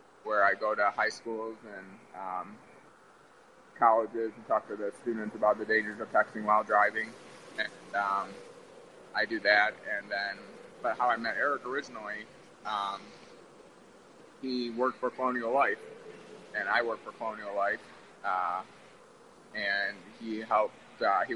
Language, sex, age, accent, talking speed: English, male, 20-39, American, 145 wpm